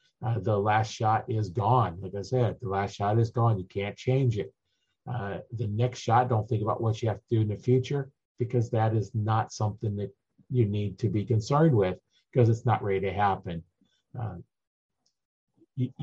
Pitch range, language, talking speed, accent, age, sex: 105-125 Hz, English, 200 wpm, American, 50-69, male